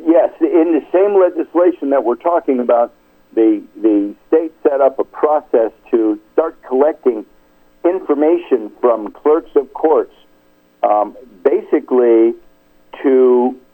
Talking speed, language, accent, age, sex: 120 wpm, English, American, 60-79, male